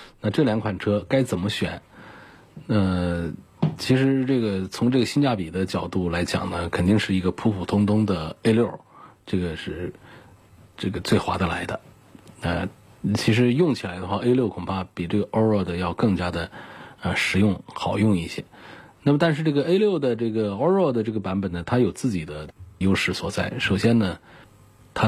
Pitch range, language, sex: 90-115 Hz, Chinese, male